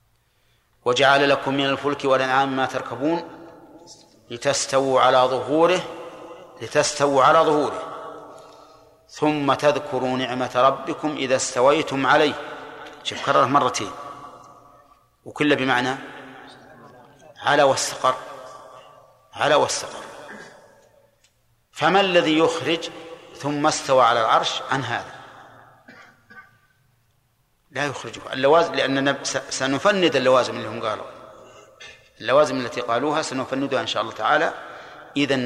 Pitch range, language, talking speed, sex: 125-150 Hz, Arabic, 95 wpm, male